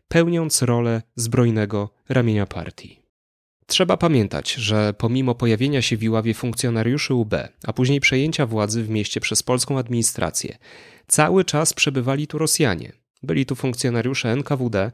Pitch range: 110-135 Hz